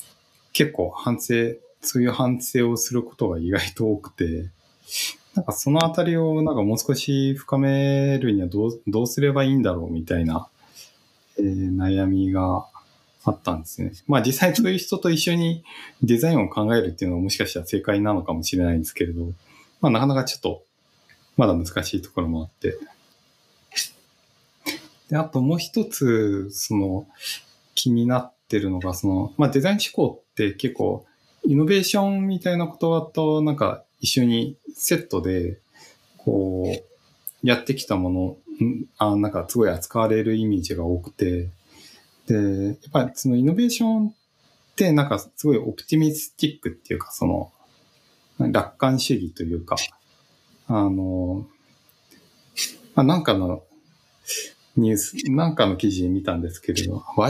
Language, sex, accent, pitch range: Japanese, male, native, 95-150 Hz